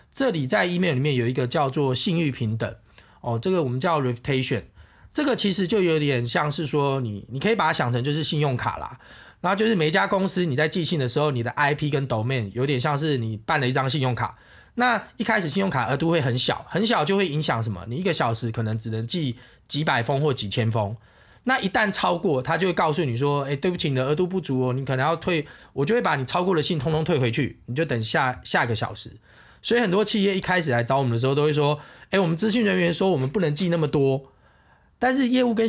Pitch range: 125-180 Hz